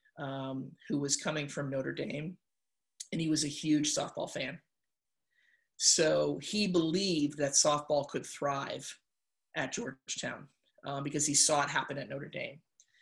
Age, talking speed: 30-49, 150 wpm